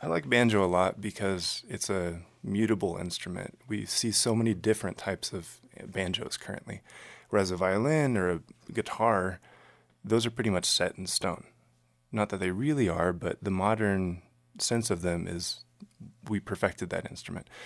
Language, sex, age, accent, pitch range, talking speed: English, male, 30-49, American, 90-105 Hz, 165 wpm